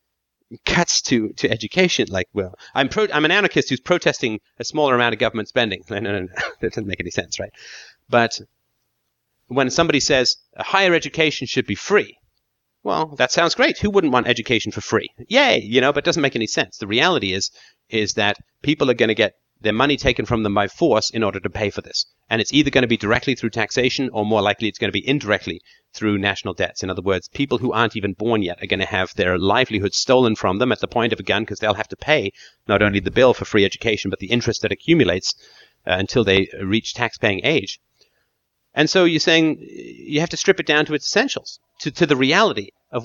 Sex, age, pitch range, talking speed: male, 30-49, 105-140 Hz, 230 wpm